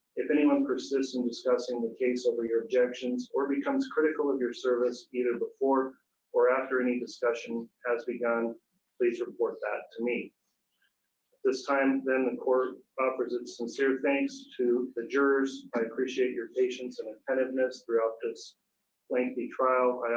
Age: 40-59